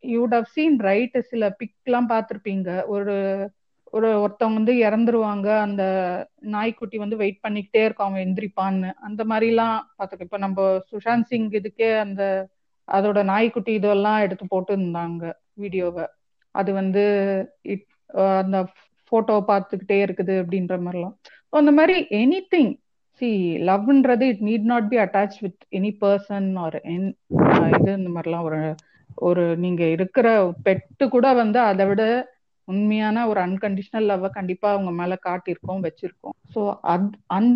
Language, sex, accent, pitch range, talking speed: Tamil, female, native, 190-225 Hz, 135 wpm